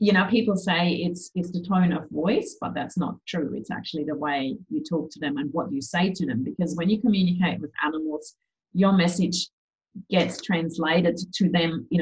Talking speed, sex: 205 wpm, female